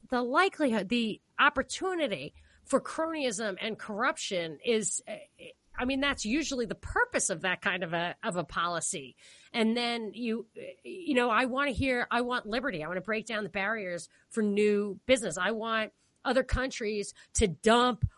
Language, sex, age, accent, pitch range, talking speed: English, female, 30-49, American, 200-270 Hz, 170 wpm